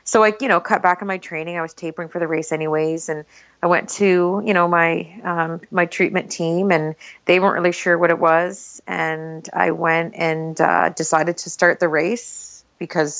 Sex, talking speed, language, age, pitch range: female, 210 wpm, English, 30-49, 160-190 Hz